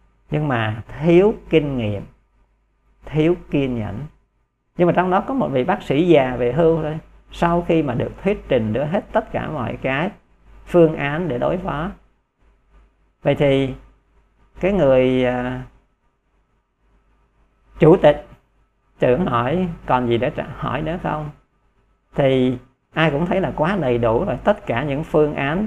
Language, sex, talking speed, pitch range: Vietnamese, male, 155 wpm, 125-170 Hz